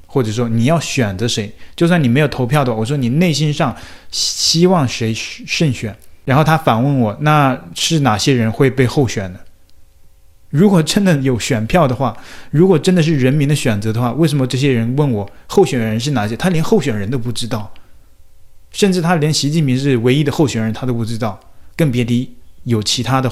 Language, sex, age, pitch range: Chinese, male, 20-39, 110-145 Hz